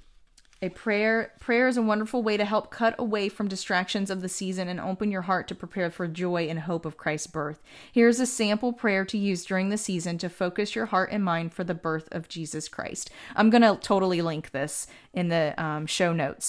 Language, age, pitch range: English, 30-49, 170-210 Hz